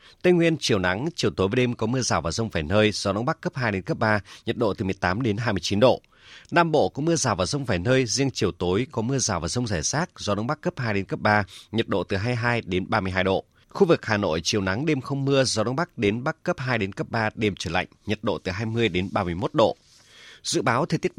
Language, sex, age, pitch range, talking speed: Vietnamese, male, 30-49, 100-140 Hz, 275 wpm